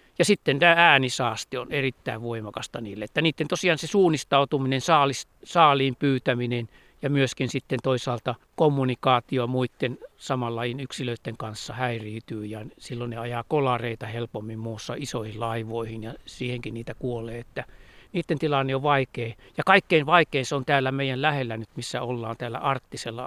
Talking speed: 145 wpm